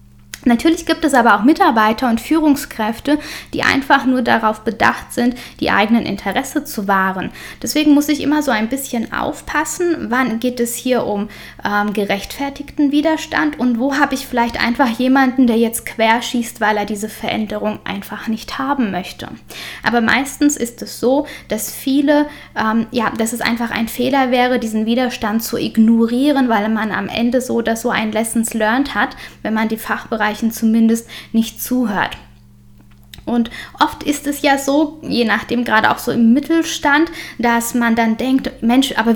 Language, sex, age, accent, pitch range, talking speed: German, female, 10-29, German, 225-270 Hz, 165 wpm